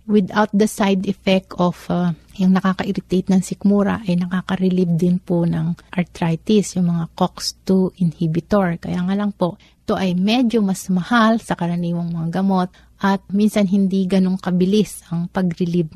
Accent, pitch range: native, 175-210 Hz